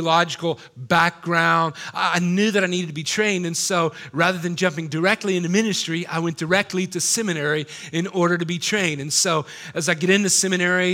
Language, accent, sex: English, American, male